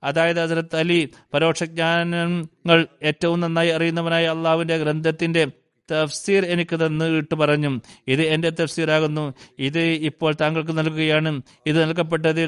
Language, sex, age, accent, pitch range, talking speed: Malayalam, male, 30-49, native, 150-165 Hz, 105 wpm